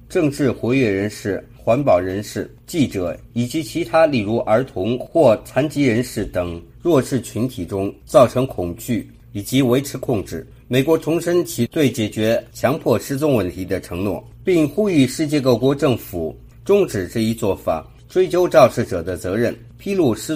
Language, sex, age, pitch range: Chinese, male, 50-69, 110-145 Hz